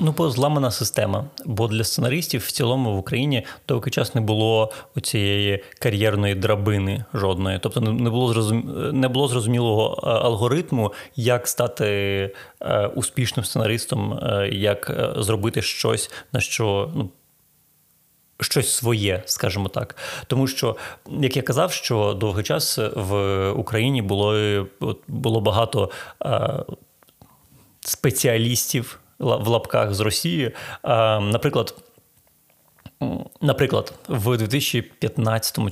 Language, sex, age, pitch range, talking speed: Ukrainian, male, 30-49, 105-135 Hz, 100 wpm